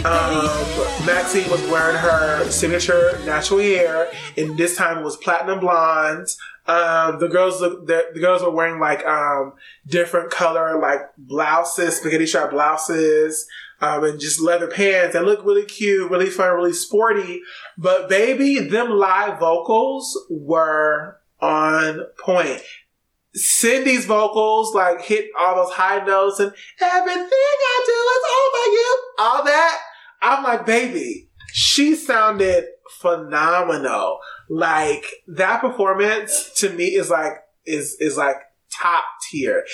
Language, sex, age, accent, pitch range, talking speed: English, male, 20-39, American, 160-215 Hz, 135 wpm